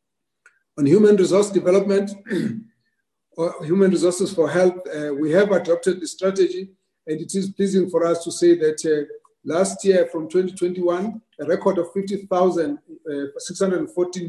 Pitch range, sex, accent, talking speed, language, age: 155-190 Hz, male, South African, 145 wpm, English, 50-69